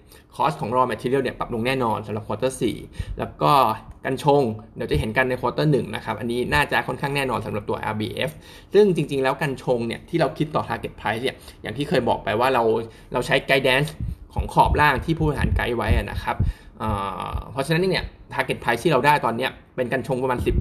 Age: 20-39